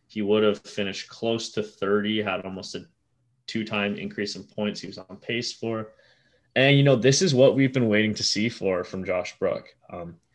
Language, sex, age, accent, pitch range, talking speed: English, male, 20-39, American, 95-110 Hz, 205 wpm